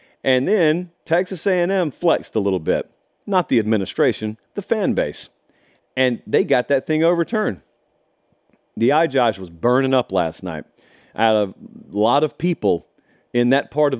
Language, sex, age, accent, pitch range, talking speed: English, male, 40-59, American, 120-170 Hz, 165 wpm